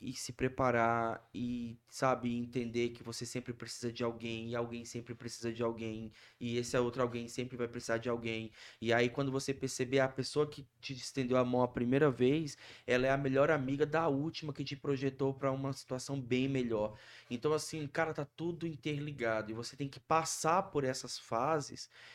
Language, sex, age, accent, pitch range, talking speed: Portuguese, male, 20-39, Brazilian, 115-140 Hz, 195 wpm